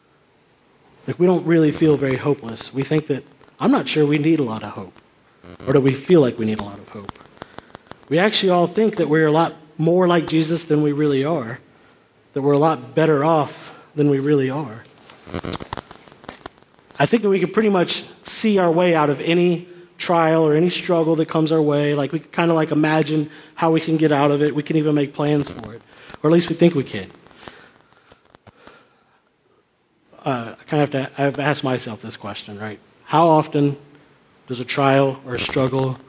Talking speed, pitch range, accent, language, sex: 205 wpm, 130-160 Hz, American, English, male